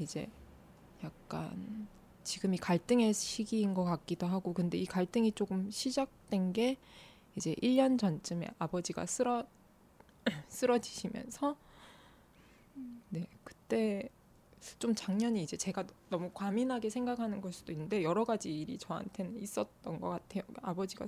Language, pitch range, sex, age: Korean, 185-235 Hz, female, 20-39